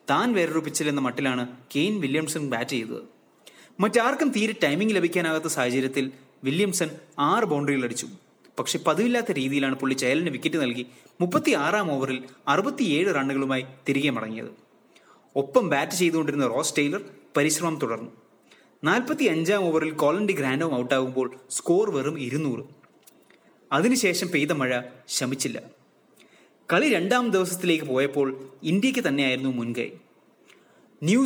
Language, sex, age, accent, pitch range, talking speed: English, male, 30-49, Indian, 130-180 Hz, 90 wpm